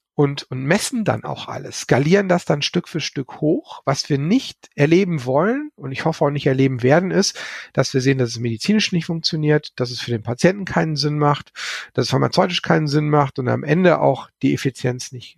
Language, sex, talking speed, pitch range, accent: German, male, 210 wpm, 135-175 Hz, German